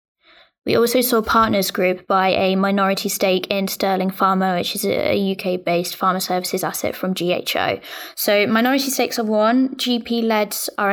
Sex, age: female, 20-39